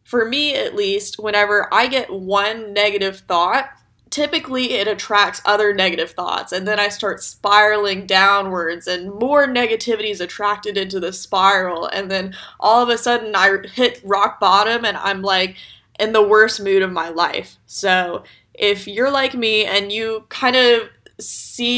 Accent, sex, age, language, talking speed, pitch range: American, female, 20-39, English, 165 wpm, 190-225 Hz